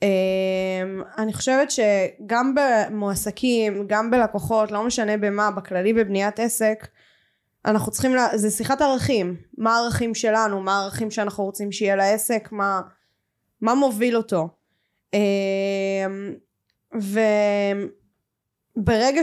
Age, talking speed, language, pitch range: 10-29, 105 wpm, Hebrew, 200-235 Hz